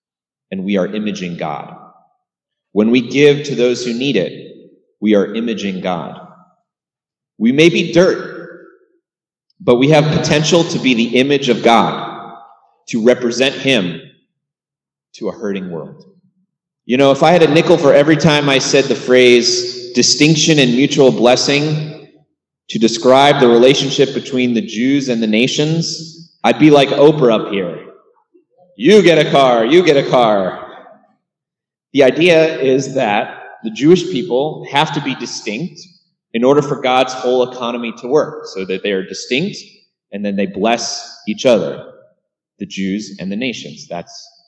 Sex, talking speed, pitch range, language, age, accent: male, 155 wpm, 120-165 Hz, English, 30-49, American